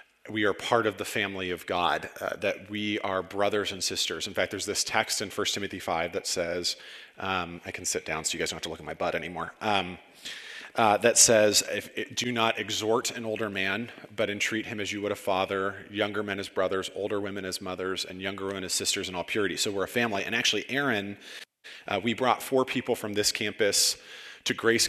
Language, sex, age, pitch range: English, male, 40-59, 95-115 Hz